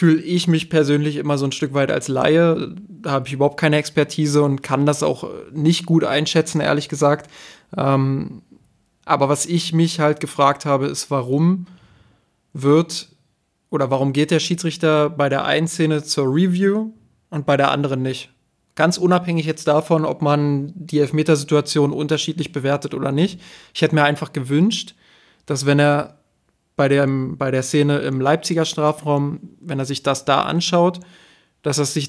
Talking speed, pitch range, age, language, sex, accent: 165 wpm, 140-160 Hz, 20-39, German, male, German